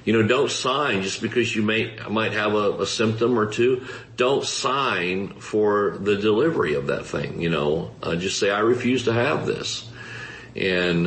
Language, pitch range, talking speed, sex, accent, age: English, 100-120 Hz, 185 wpm, male, American, 50-69